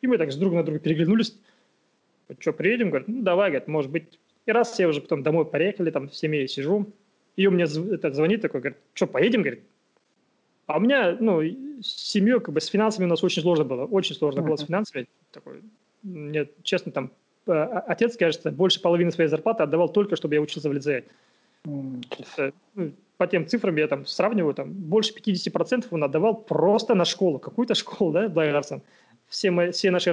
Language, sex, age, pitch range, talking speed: Russian, male, 20-39, 155-205 Hz, 185 wpm